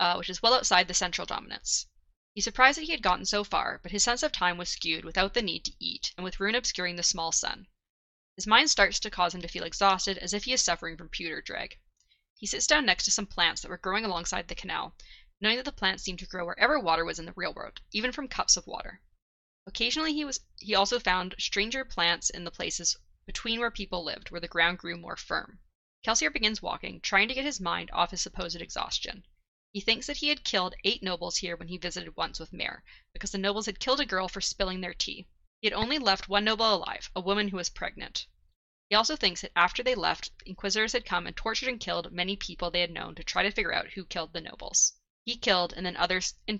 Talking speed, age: 245 wpm, 10-29